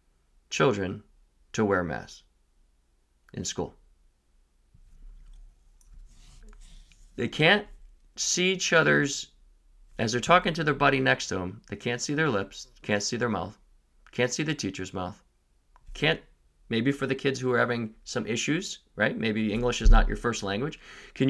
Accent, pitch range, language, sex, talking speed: American, 110-180 Hz, English, male, 150 wpm